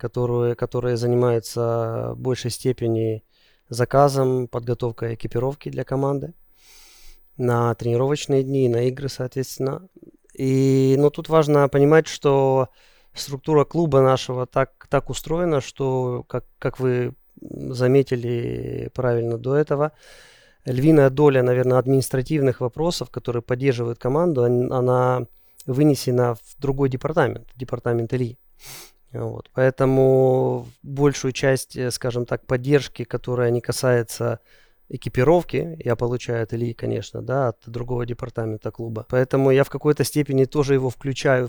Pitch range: 120-140 Hz